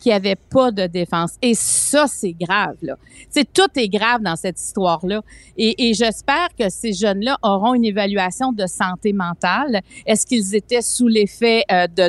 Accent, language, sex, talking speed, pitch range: Canadian, French, female, 190 wpm, 205-250 Hz